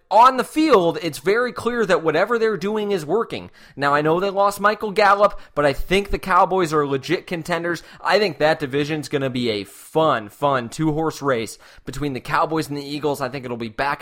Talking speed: 220 wpm